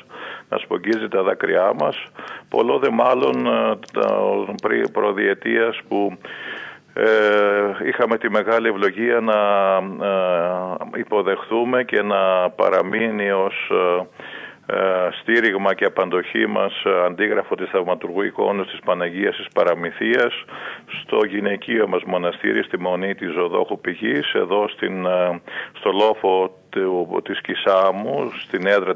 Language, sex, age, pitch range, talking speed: Greek, male, 50-69, 90-110 Hz, 105 wpm